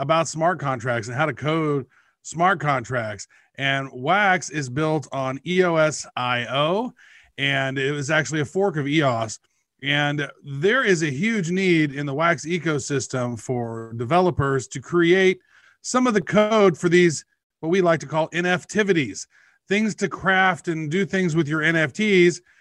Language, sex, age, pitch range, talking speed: English, male, 40-59, 140-175 Hz, 155 wpm